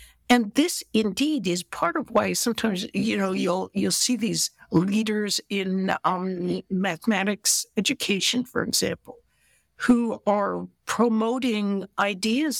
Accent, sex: American, female